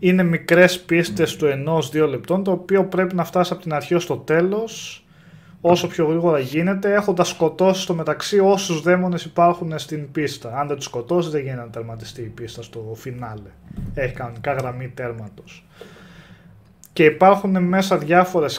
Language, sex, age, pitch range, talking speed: Greek, male, 20-39, 125-180 Hz, 165 wpm